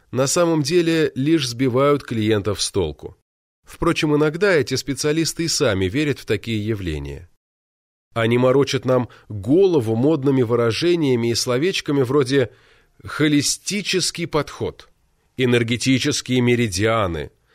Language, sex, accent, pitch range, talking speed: Russian, male, native, 105-150 Hz, 105 wpm